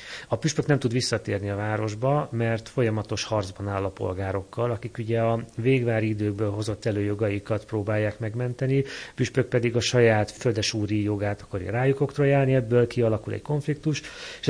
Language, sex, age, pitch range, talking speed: Hungarian, male, 30-49, 105-125 Hz, 150 wpm